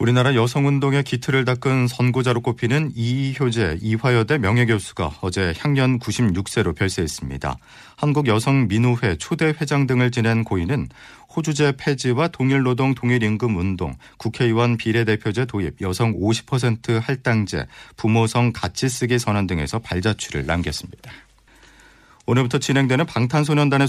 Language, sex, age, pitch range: Korean, male, 40-59, 105-135 Hz